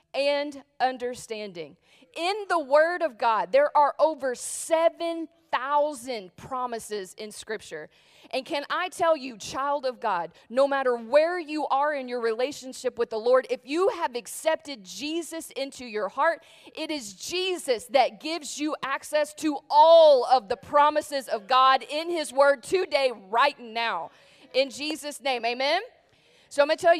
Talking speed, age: 155 wpm, 40-59